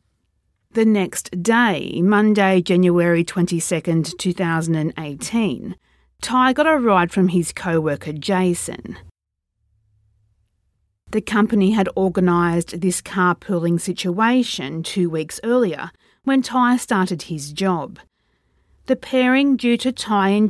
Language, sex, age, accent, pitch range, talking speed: English, female, 40-59, Australian, 165-215 Hz, 105 wpm